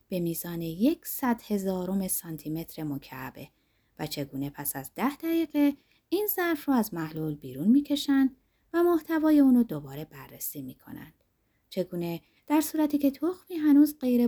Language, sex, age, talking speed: Persian, female, 30-49, 140 wpm